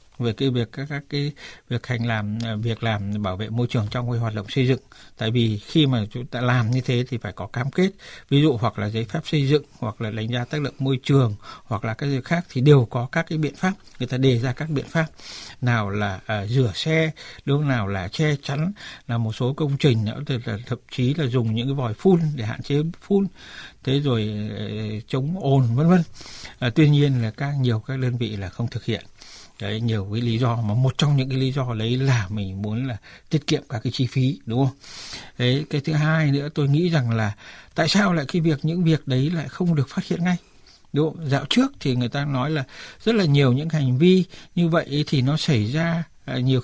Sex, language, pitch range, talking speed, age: male, Vietnamese, 120-155 Hz, 240 wpm, 60-79